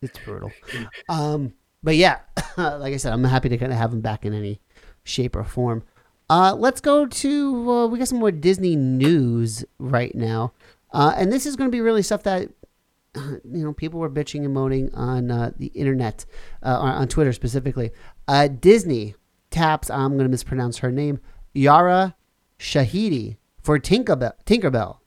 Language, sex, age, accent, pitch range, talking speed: English, male, 40-59, American, 125-160 Hz, 175 wpm